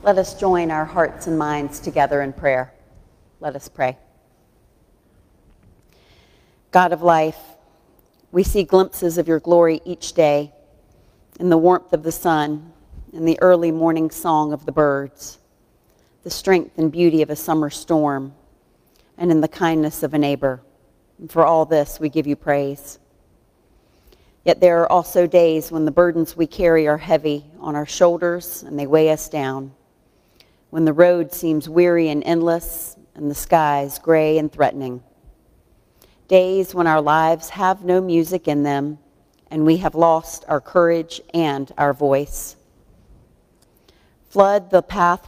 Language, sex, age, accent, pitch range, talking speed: English, female, 40-59, American, 150-175 Hz, 150 wpm